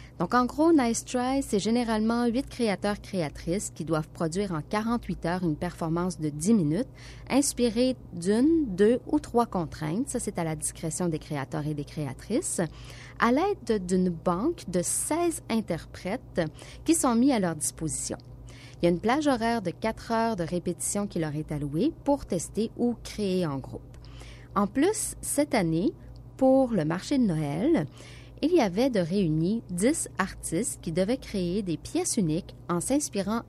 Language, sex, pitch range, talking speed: French, female, 160-230 Hz, 170 wpm